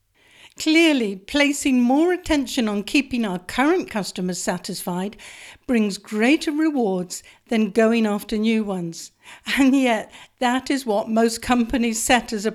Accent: British